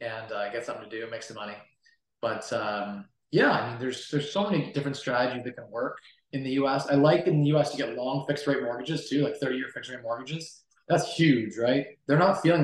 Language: English